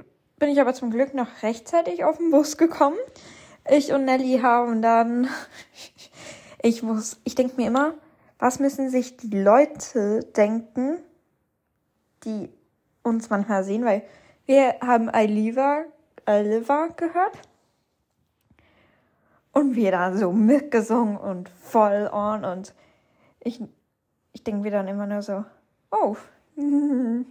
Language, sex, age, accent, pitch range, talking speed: German, female, 10-29, German, 230-305 Hz, 130 wpm